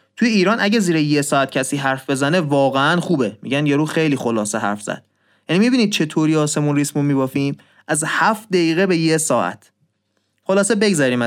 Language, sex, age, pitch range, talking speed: Persian, male, 30-49, 130-175 Hz, 165 wpm